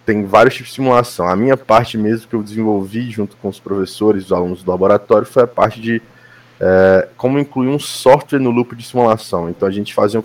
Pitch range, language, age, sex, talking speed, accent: 100-125 Hz, Portuguese, 20-39, male, 220 wpm, Brazilian